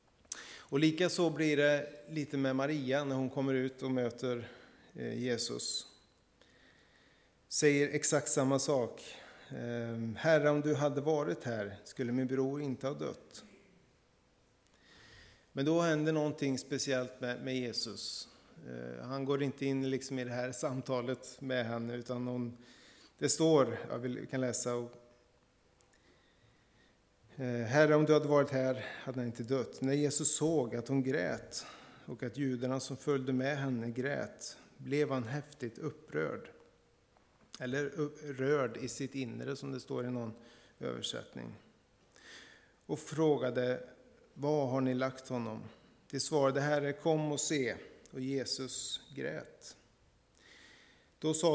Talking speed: 130 wpm